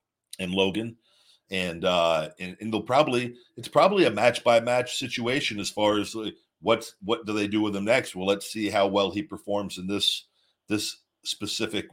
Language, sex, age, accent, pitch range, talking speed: English, male, 50-69, American, 95-110 Hz, 190 wpm